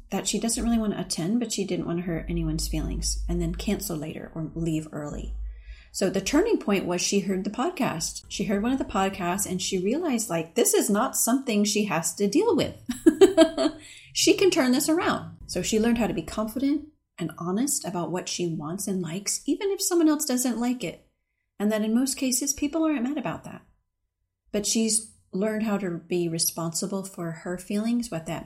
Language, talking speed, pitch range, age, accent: English, 210 wpm, 170-235 Hz, 30-49, American